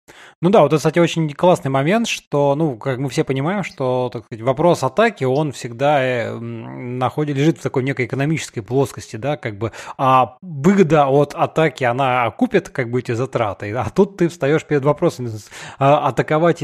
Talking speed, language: 175 wpm, Russian